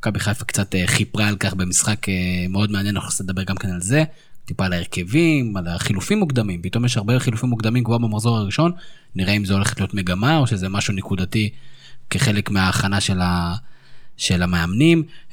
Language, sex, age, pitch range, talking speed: Hebrew, male, 20-39, 100-150 Hz, 170 wpm